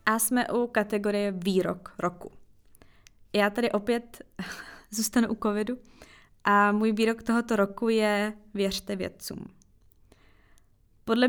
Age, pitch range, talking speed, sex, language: 20-39, 200-230 Hz, 110 wpm, female, Czech